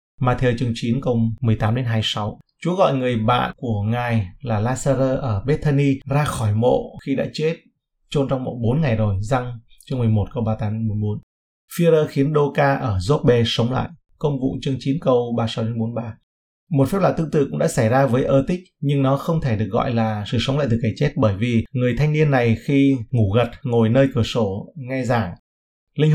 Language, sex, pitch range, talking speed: Vietnamese, male, 115-140 Hz, 200 wpm